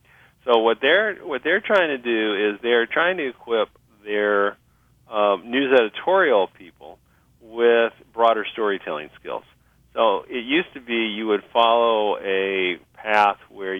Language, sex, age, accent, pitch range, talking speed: English, male, 40-59, American, 95-120 Hz, 145 wpm